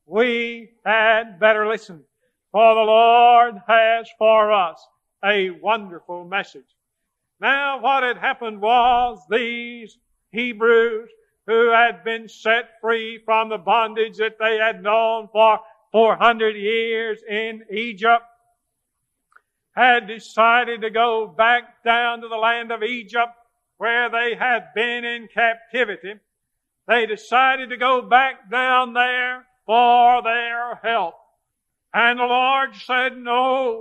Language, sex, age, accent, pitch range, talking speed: English, male, 50-69, American, 205-245 Hz, 120 wpm